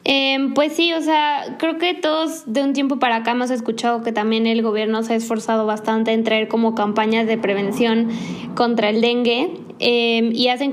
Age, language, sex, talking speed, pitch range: 20-39, Spanish, female, 195 wpm, 230-255 Hz